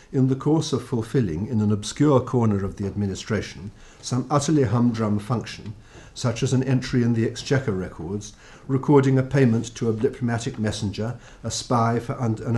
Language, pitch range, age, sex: English, 110-130 Hz, 50-69, male